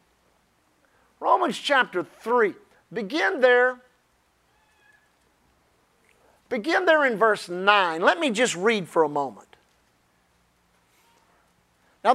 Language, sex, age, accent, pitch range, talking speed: English, male, 50-69, American, 215-295 Hz, 90 wpm